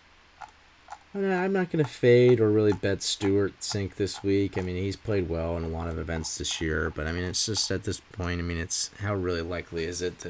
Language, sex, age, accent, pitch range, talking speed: English, male, 30-49, American, 85-100 Hz, 235 wpm